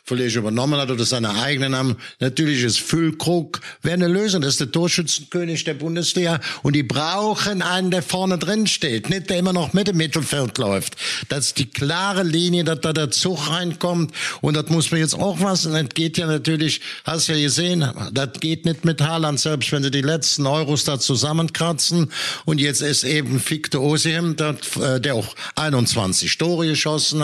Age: 60-79